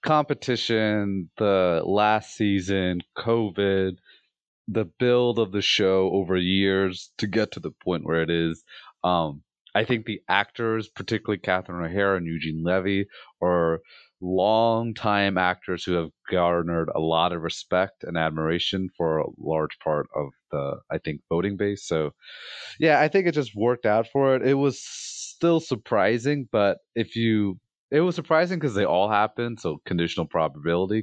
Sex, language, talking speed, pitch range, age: male, English, 155 wpm, 90-120 Hz, 30-49